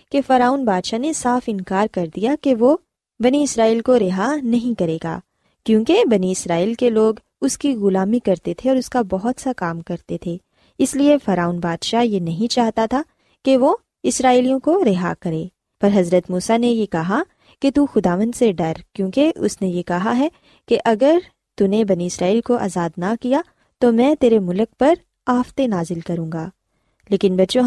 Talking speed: 190 wpm